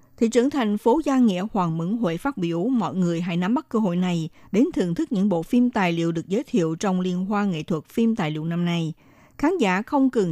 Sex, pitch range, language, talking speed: female, 170-230 Hz, Vietnamese, 255 wpm